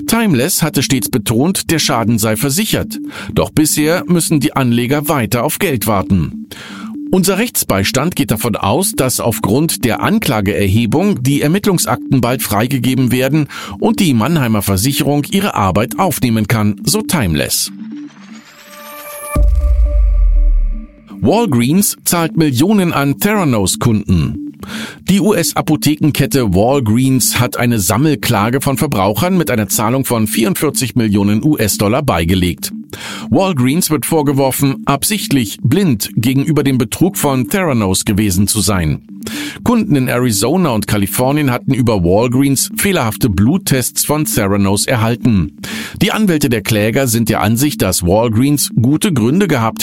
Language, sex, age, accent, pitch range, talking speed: German, male, 50-69, German, 105-155 Hz, 120 wpm